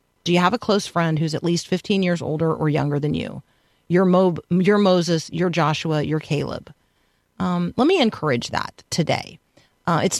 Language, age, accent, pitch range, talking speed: English, 40-59, American, 170-210 Hz, 190 wpm